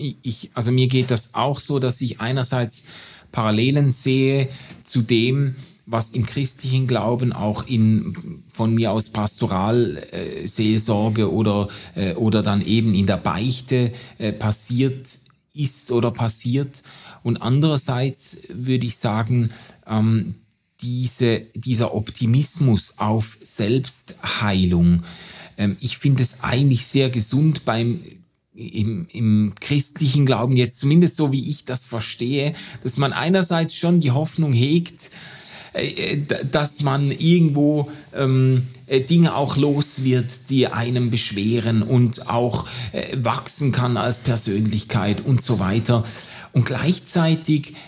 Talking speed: 125 wpm